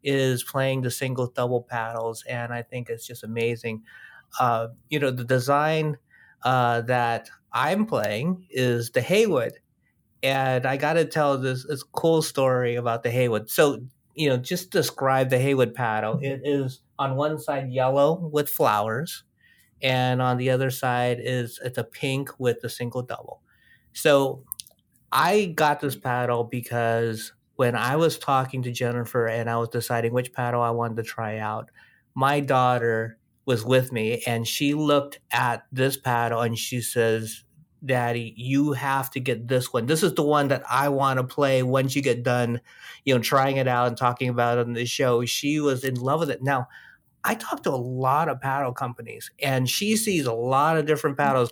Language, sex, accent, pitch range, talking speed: English, male, American, 120-140 Hz, 180 wpm